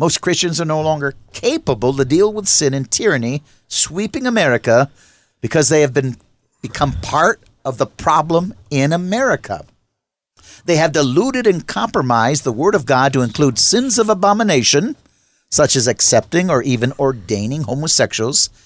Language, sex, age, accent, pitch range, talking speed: English, male, 50-69, American, 120-165 Hz, 150 wpm